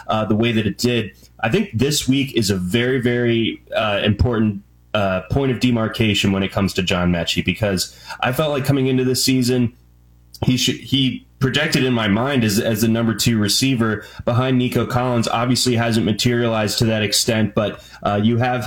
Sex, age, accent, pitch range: male, 20-39, American, 105-125 Hz